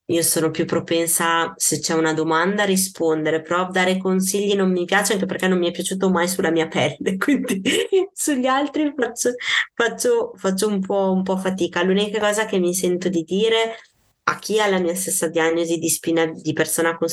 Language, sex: Italian, female